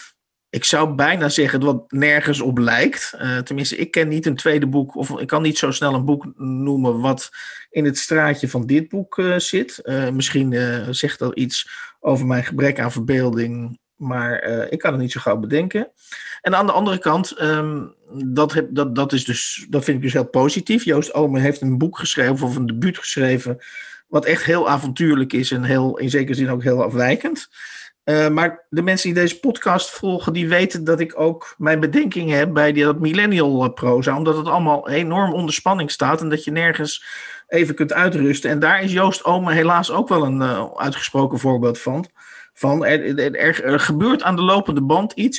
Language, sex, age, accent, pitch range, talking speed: Dutch, male, 50-69, Dutch, 135-170 Hz, 190 wpm